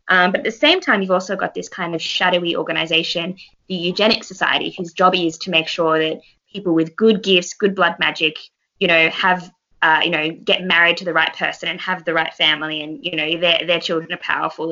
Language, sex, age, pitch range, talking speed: English, female, 20-39, 165-200 Hz, 230 wpm